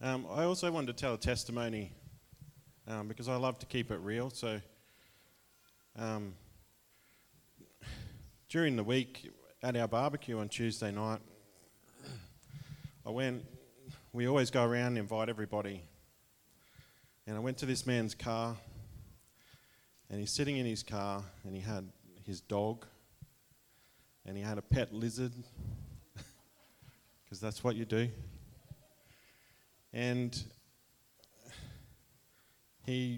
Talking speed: 120 wpm